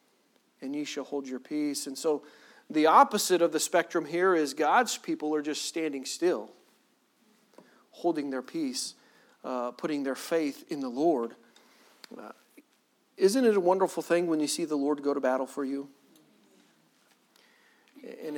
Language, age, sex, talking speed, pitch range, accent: English, 40-59, male, 155 wpm, 135-165 Hz, American